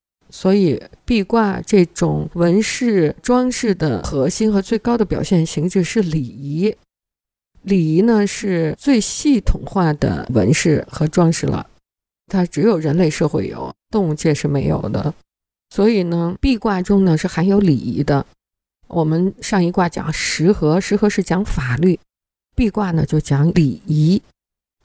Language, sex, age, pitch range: Chinese, female, 50-69, 160-210 Hz